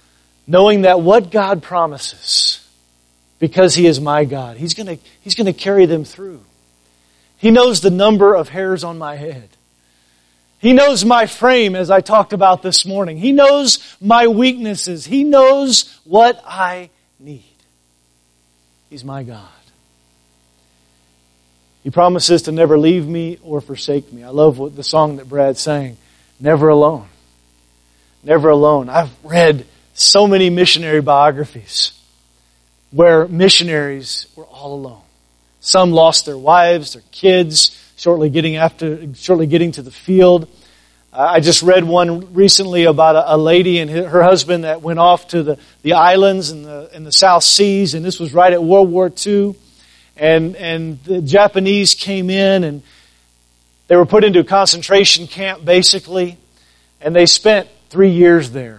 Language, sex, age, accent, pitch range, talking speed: English, male, 40-59, American, 120-185 Hz, 150 wpm